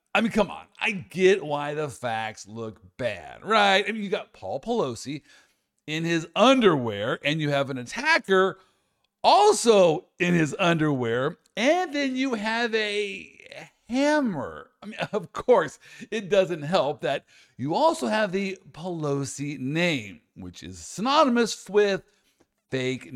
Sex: male